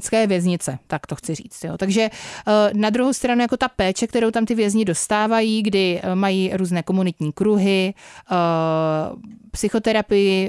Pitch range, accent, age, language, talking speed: 180-215 Hz, native, 30-49, Czech, 135 wpm